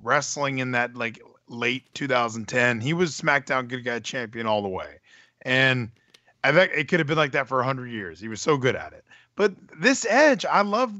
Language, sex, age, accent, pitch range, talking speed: English, male, 20-39, American, 125-170 Hz, 215 wpm